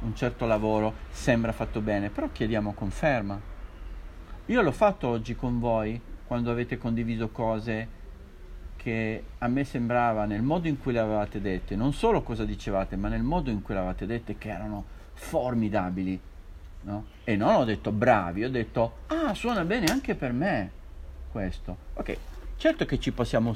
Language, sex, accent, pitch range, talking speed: Italian, male, native, 100-130 Hz, 165 wpm